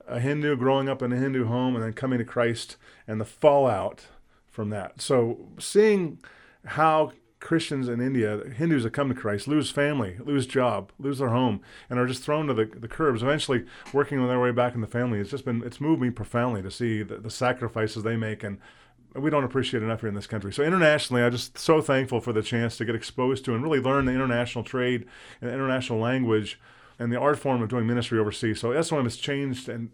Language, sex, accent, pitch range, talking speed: English, male, American, 115-140 Hz, 225 wpm